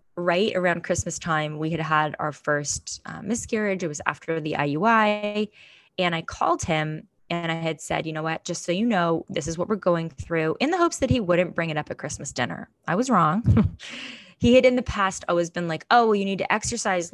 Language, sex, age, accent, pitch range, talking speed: English, female, 20-39, American, 165-210 Hz, 230 wpm